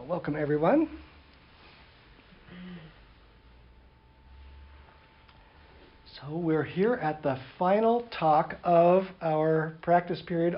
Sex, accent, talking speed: male, American, 75 wpm